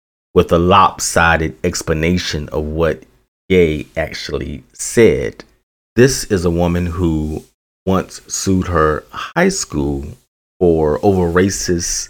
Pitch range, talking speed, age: 80-95 Hz, 110 wpm, 30-49